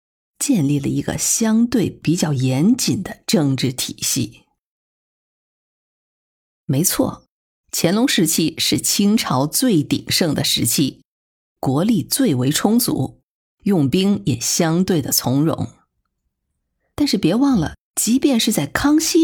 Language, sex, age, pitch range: Chinese, female, 50-69, 150-240 Hz